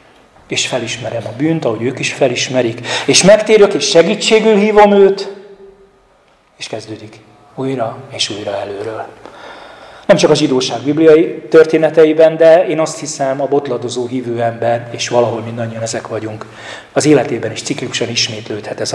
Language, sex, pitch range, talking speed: Hungarian, male, 120-145 Hz, 145 wpm